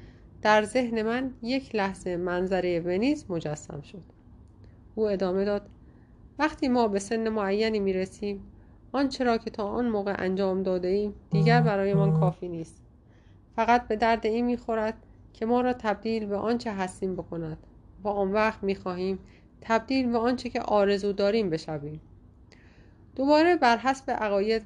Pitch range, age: 170-225 Hz, 30-49